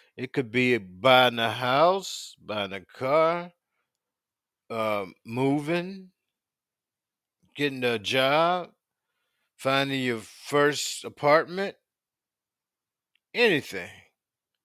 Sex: male